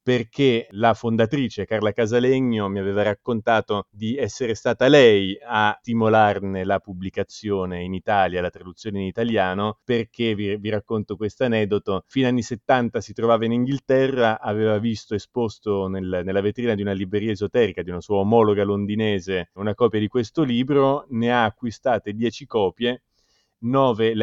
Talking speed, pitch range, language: 155 wpm, 100-120 Hz, Italian